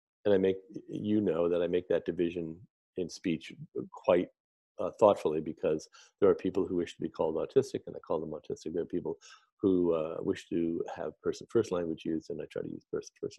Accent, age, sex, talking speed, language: American, 40-59, male, 210 wpm, English